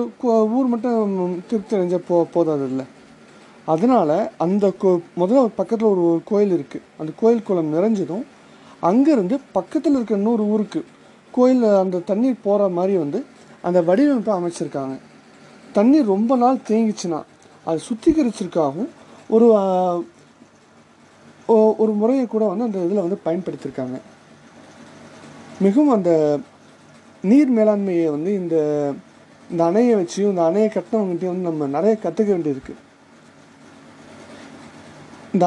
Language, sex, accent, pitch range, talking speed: Tamil, male, native, 175-245 Hz, 110 wpm